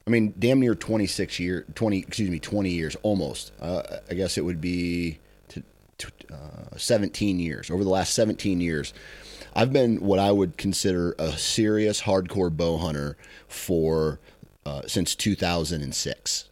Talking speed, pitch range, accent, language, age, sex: 155 wpm, 80-100 Hz, American, English, 30-49, male